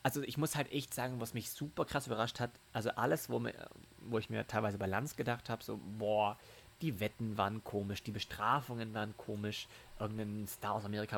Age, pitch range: 30-49, 105-125 Hz